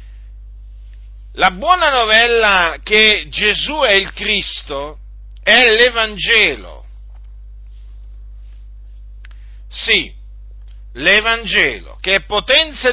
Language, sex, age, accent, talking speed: Italian, male, 50-69, native, 70 wpm